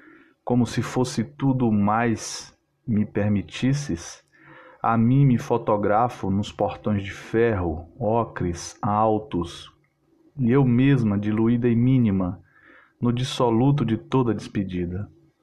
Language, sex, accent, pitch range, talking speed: Portuguese, male, Brazilian, 105-130 Hz, 110 wpm